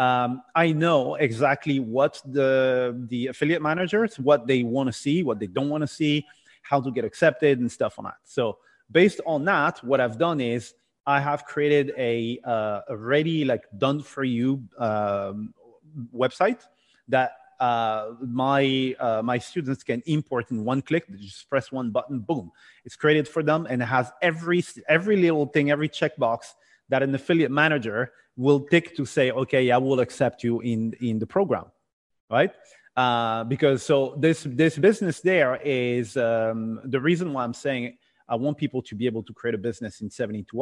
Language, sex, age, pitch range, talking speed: English, male, 30-49, 115-150 Hz, 185 wpm